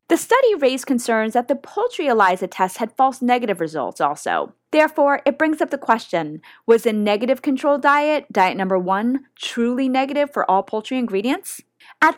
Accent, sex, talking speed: American, female, 175 wpm